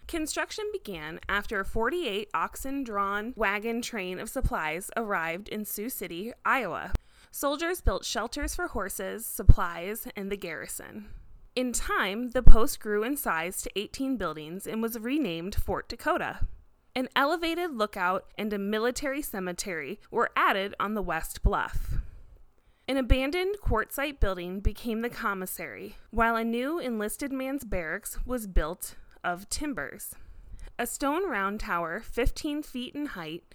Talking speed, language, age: 140 wpm, English, 20-39